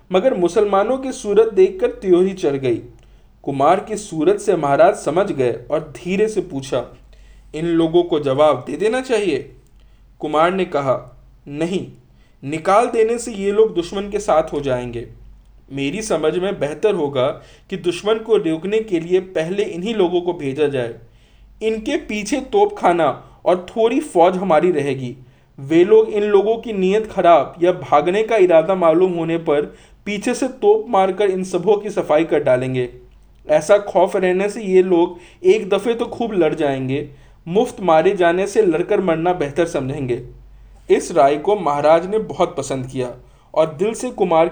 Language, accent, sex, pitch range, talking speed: Hindi, native, male, 145-210 Hz, 125 wpm